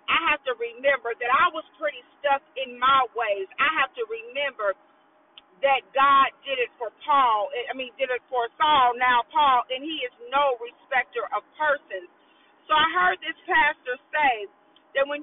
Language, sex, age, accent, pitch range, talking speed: English, female, 40-59, American, 265-320 Hz, 175 wpm